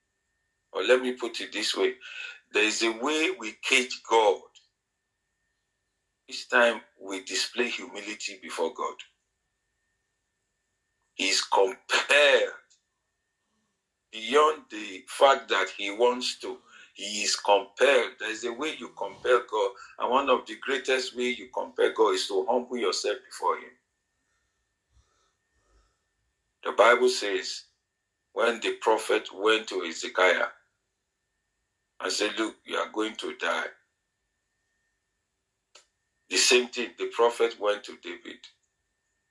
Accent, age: Nigerian, 50-69